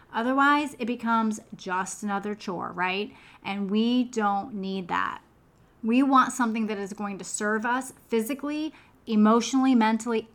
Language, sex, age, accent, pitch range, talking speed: English, female, 30-49, American, 200-240 Hz, 140 wpm